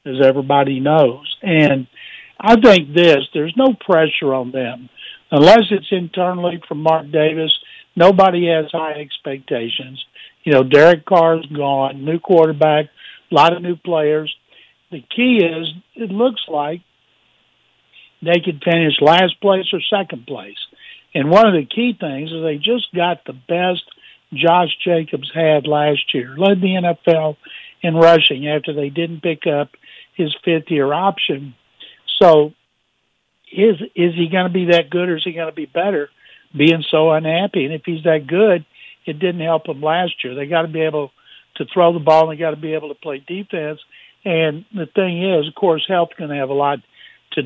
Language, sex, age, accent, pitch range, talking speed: English, male, 60-79, American, 150-185 Hz, 170 wpm